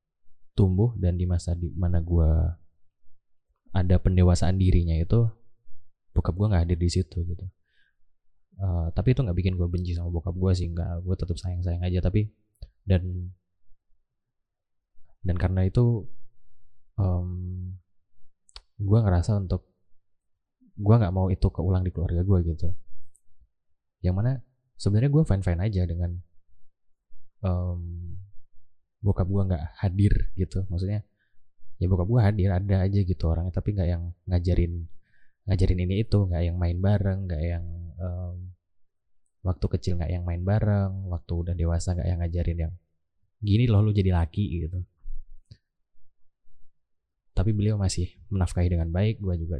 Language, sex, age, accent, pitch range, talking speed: Indonesian, male, 20-39, native, 85-95 Hz, 140 wpm